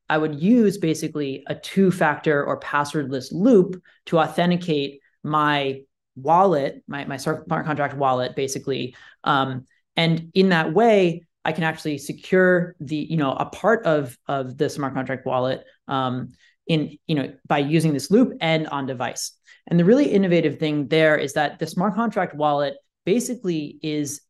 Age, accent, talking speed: 30-49, American, 160 wpm